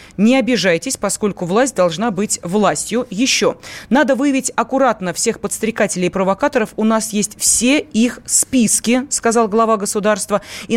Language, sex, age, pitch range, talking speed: Russian, female, 20-39, 200-265 Hz, 140 wpm